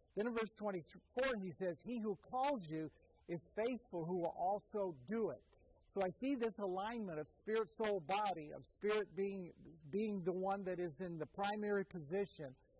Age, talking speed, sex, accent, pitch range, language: 50-69, 170 wpm, male, American, 170-215 Hz, English